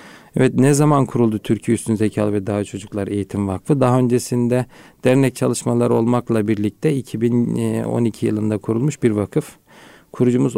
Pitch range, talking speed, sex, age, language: 110-125 Hz, 135 wpm, male, 40-59, Turkish